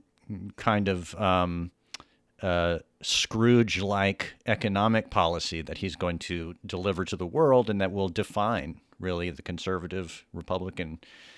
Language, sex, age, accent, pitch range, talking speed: English, male, 40-59, American, 90-110 Hz, 120 wpm